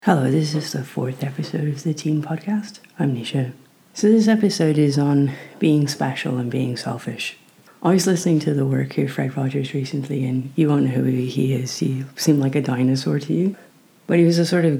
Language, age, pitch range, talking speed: English, 30-49, 135-165 Hz, 210 wpm